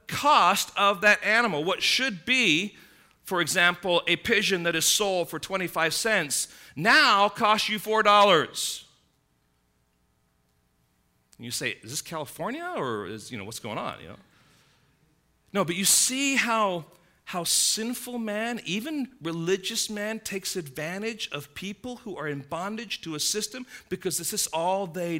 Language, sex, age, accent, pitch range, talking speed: English, male, 40-59, American, 160-220 Hz, 150 wpm